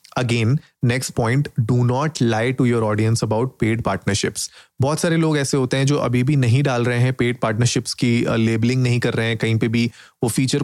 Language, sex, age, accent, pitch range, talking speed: Hindi, male, 30-49, native, 120-150 Hz, 220 wpm